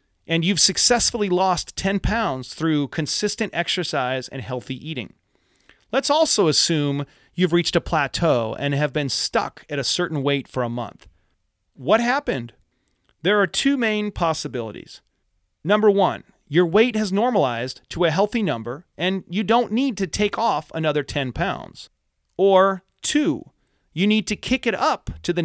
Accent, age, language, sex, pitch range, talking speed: American, 40-59, English, male, 140-205 Hz, 160 wpm